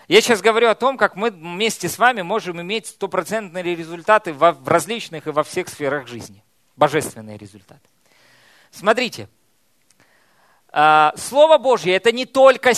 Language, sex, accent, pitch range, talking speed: Russian, male, native, 175-245 Hz, 135 wpm